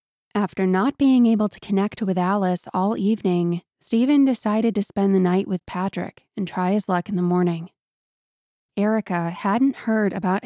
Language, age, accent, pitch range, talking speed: English, 20-39, American, 180-215 Hz, 165 wpm